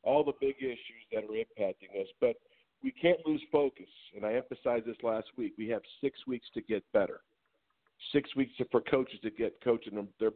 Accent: American